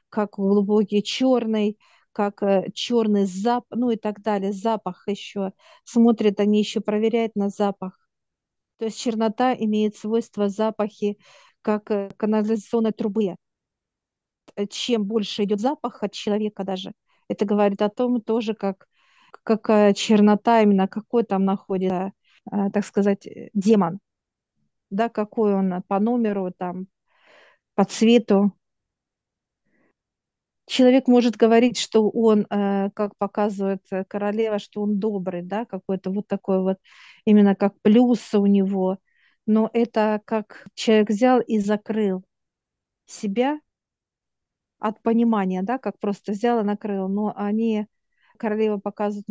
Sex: female